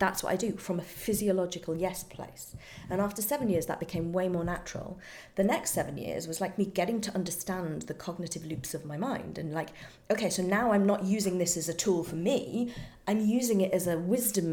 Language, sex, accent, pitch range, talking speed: English, female, British, 165-220 Hz, 225 wpm